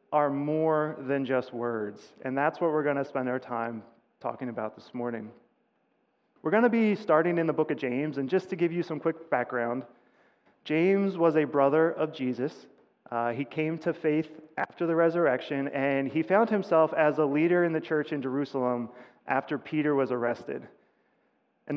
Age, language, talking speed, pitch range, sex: 30-49, English, 185 wpm, 130-160 Hz, male